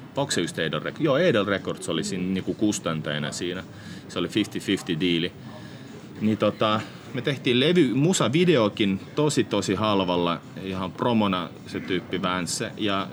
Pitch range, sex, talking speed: 90-115 Hz, male, 135 wpm